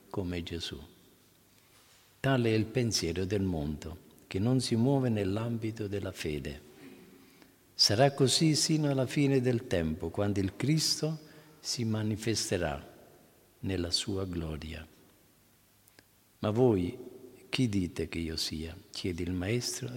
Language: Italian